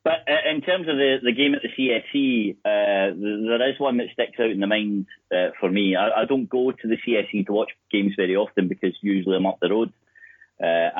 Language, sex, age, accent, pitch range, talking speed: English, male, 30-49, British, 90-120 Hz, 230 wpm